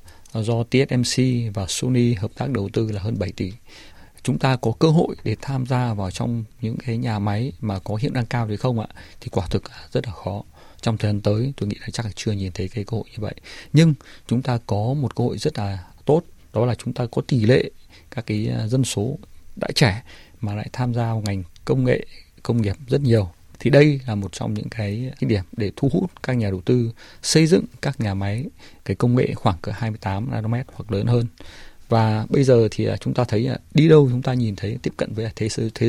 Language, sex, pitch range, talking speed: Vietnamese, male, 105-125 Hz, 230 wpm